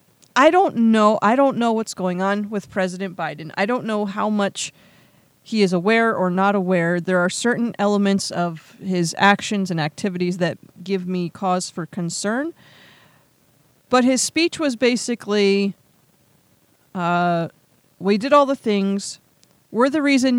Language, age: English, 30-49